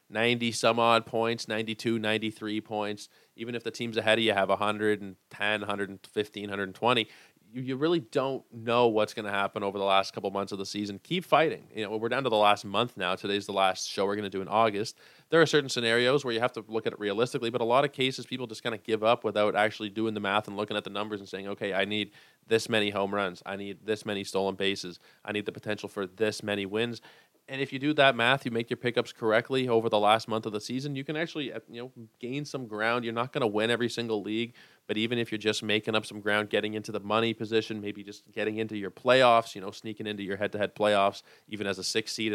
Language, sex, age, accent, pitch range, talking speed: English, male, 20-39, American, 105-115 Hz, 250 wpm